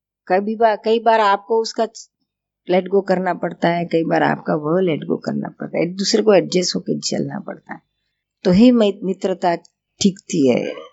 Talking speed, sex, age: 155 wpm, female, 50-69